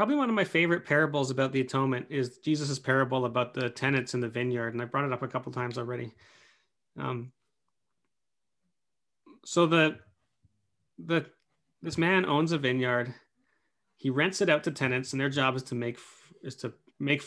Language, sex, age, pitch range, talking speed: English, male, 30-49, 125-145 Hz, 180 wpm